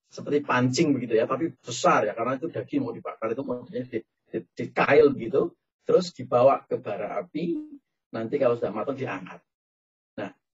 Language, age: Indonesian, 40-59